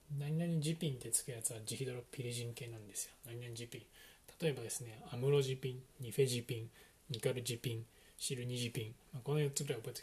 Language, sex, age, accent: Japanese, male, 20-39, native